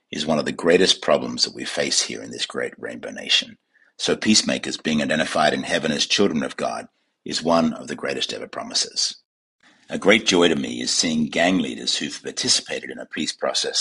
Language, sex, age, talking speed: English, male, 50-69, 205 wpm